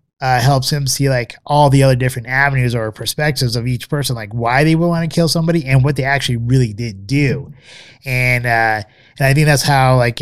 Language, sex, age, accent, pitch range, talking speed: English, male, 20-39, American, 115-140 Hz, 225 wpm